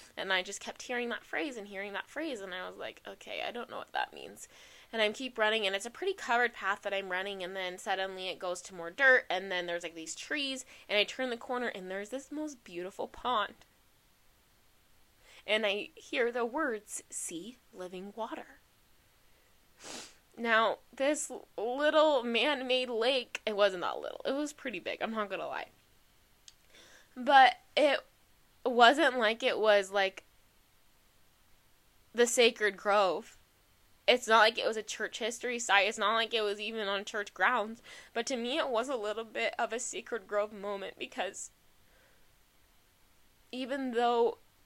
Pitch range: 185-260 Hz